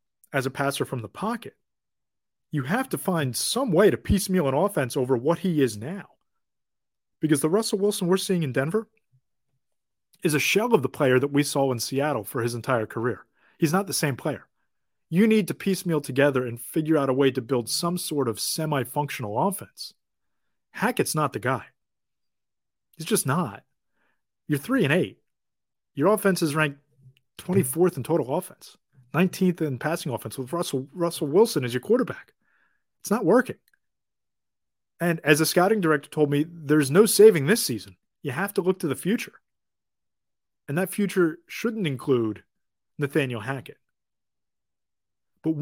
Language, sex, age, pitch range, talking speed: English, male, 30-49, 135-175 Hz, 165 wpm